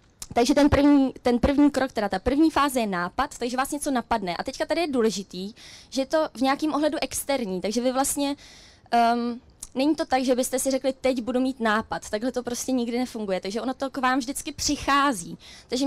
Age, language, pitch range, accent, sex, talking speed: 20-39, Czech, 220-270 Hz, native, female, 205 wpm